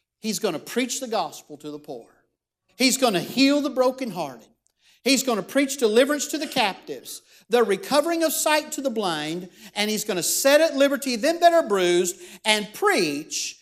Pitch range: 205-300 Hz